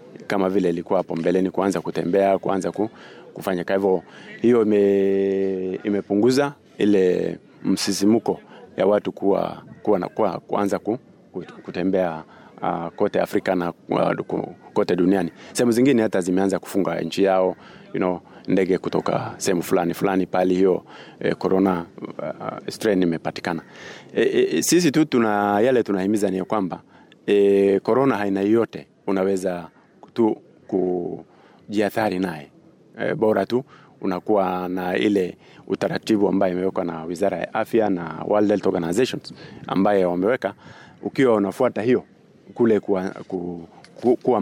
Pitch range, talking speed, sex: 90-110 Hz, 120 wpm, male